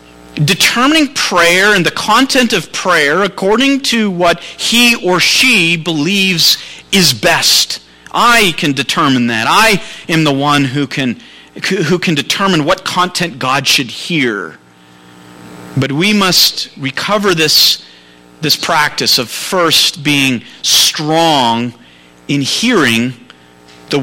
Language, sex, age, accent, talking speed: English, male, 40-59, American, 120 wpm